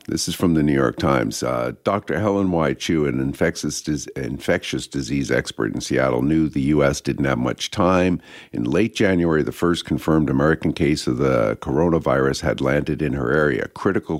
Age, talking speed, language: 50-69, 180 wpm, English